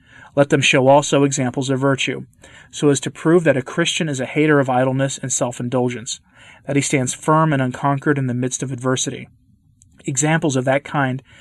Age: 30-49